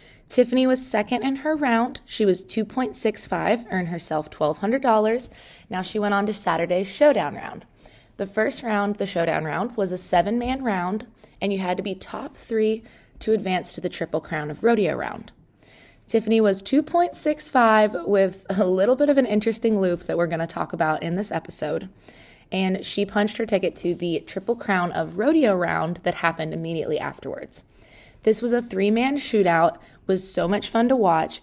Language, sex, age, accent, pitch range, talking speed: English, female, 20-39, American, 180-230 Hz, 175 wpm